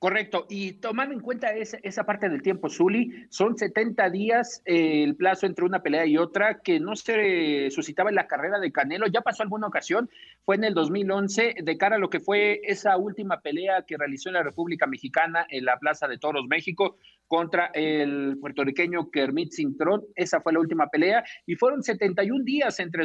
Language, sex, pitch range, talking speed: Spanish, male, 160-220 Hz, 190 wpm